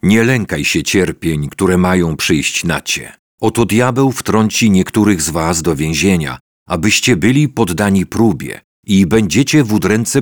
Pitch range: 85-110 Hz